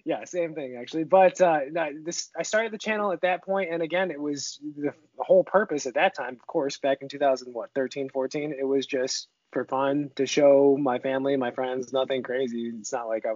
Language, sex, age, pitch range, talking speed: English, male, 20-39, 130-160 Hz, 220 wpm